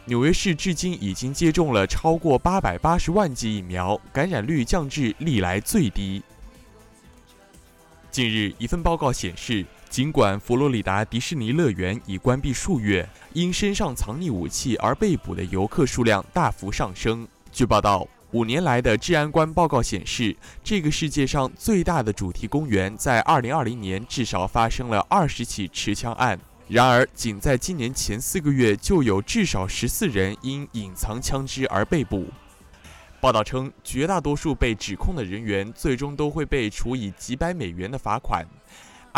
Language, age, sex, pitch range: Chinese, 20-39, male, 100-145 Hz